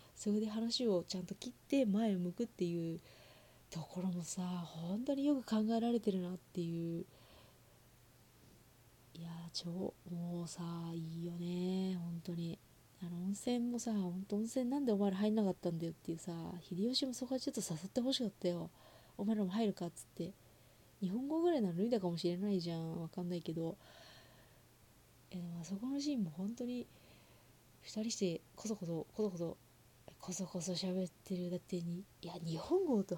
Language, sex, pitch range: Japanese, female, 170-225 Hz